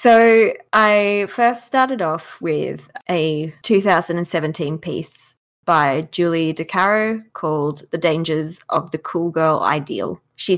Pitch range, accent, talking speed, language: 155-195 Hz, Australian, 120 wpm, English